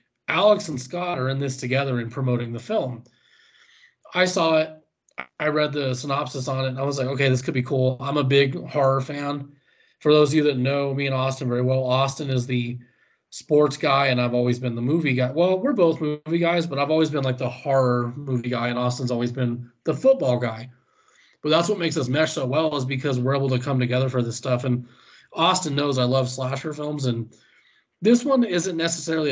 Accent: American